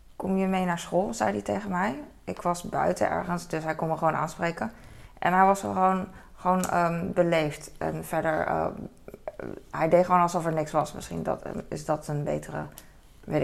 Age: 20-39